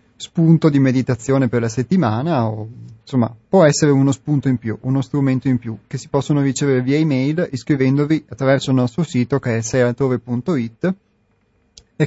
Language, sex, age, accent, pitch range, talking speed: Italian, male, 30-49, native, 120-145 Hz, 165 wpm